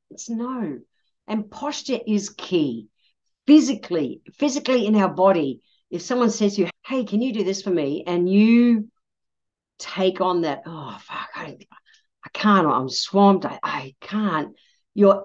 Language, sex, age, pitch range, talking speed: English, female, 50-69, 165-230 Hz, 155 wpm